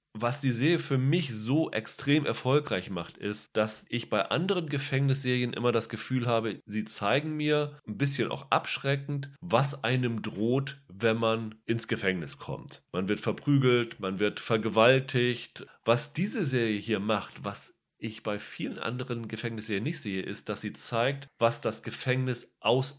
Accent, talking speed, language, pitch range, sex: German, 160 wpm, German, 110-140 Hz, male